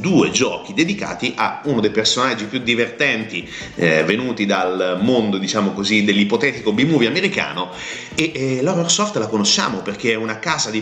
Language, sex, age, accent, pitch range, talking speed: Italian, male, 30-49, native, 105-140 Hz, 160 wpm